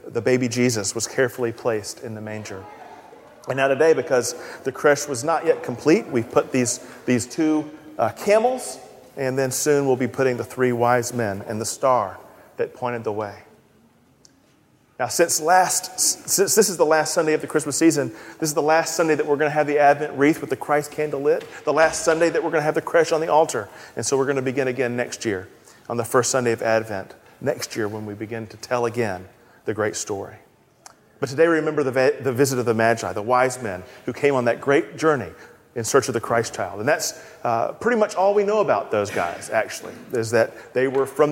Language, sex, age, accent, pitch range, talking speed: English, male, 40-59, American, 125-180 Hz, 225 wpm